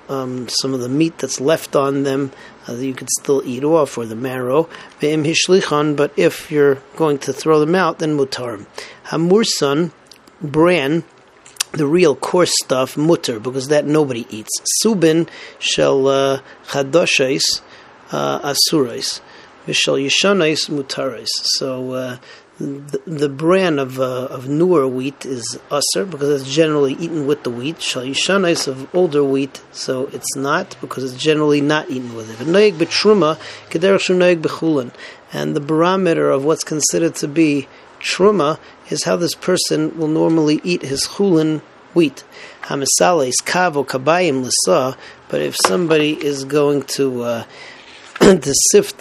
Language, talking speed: English, 135 wpm